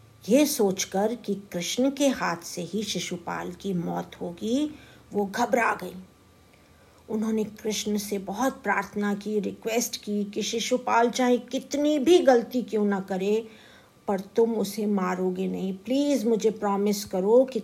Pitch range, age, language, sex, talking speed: 185-245 Hz, 50-69, Hindi, female, 145 wpm